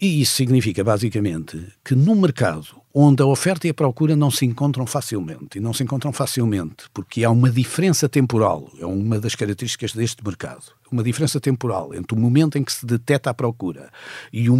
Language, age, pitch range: Portuguese, 50-69, 110-145 Hz